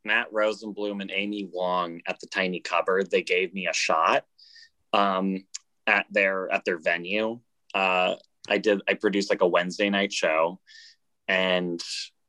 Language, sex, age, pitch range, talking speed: English, male, 20-39, 90-115 Hz, 150 wpm